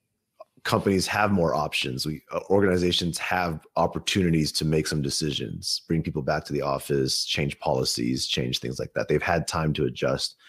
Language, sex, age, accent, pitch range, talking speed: English, male, 30-49, American, 75-95 Hz, 165 wpm